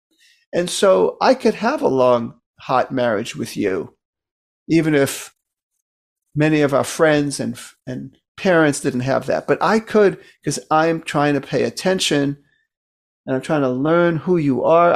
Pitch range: 135-185 Hz